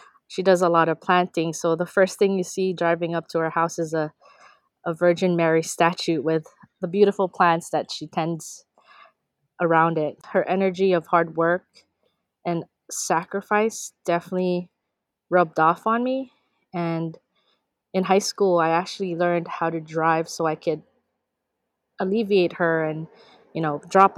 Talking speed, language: 155 wpm, English